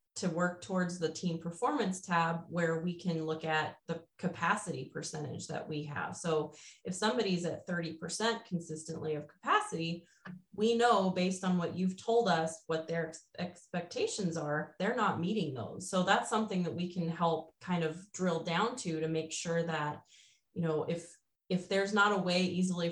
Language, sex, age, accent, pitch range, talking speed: English, female, 30-49, American, 160-185 Hz, 180 wpm